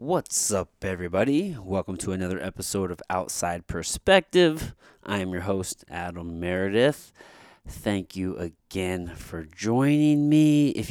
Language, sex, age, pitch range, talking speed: English, male, 30-49, 90-115 Hz, 125 wpm